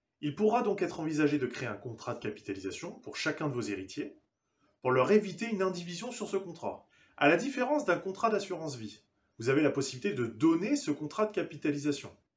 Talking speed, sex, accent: 200 wpm, male, French